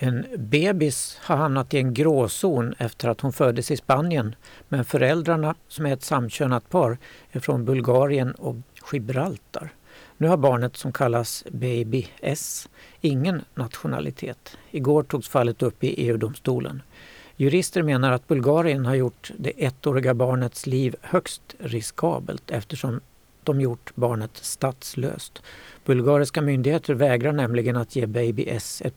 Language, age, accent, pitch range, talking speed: Swedish, 60-79, native, 120-145 Hz, 135 wpm